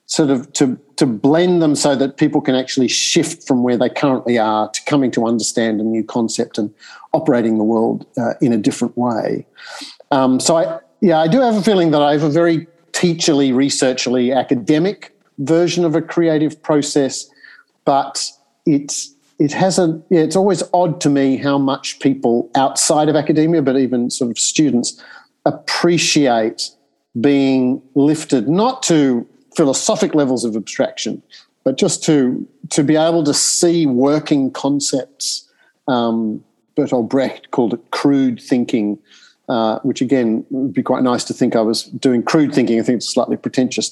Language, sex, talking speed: English, male, 165 wpm